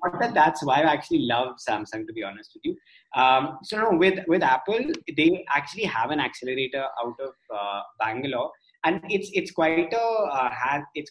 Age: 20-39